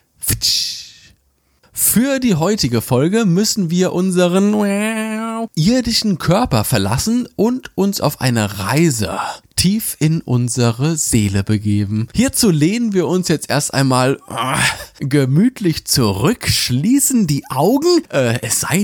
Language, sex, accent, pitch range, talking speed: German, male, German, 130-205 Hz, 110 wpm